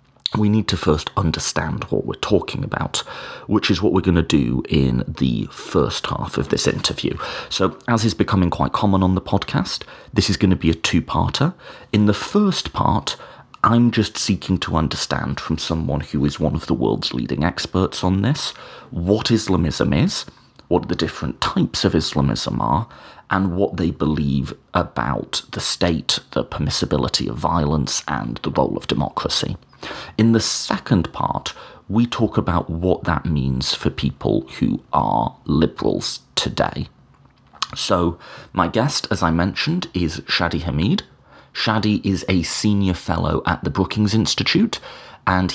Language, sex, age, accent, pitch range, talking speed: English, male, 30-49, British, 80-105 Hz, 160 wpm